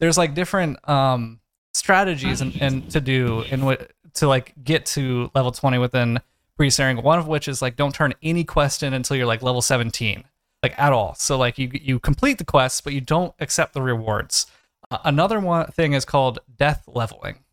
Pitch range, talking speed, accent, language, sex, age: 130-170 Hz, 200 wpm, American, English, male, 20-39